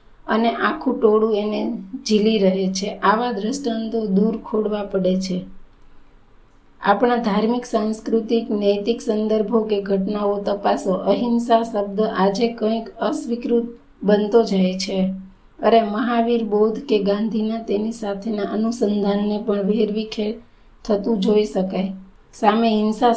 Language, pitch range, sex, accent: Gujarati, 205-230 Hz, female, native